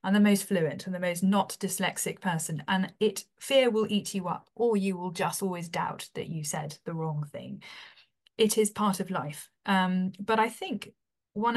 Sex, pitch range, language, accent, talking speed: female, 175-210 Hz, English, British, 200 wpm